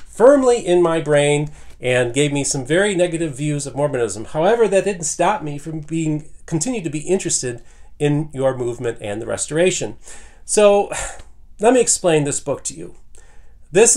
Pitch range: 140-170 Hz